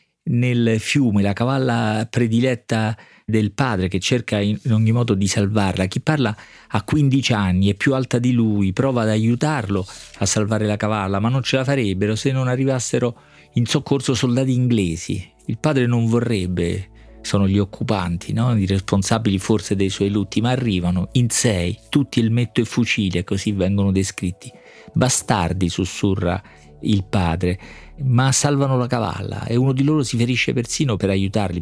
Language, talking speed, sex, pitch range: Italian, 165 wpm, male, 100-120 Hz